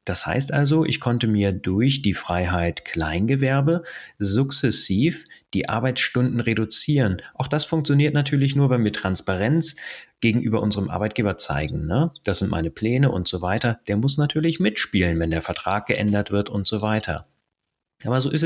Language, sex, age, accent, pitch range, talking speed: German, male, 30-49, German, 100-120 Hz, 155 wpm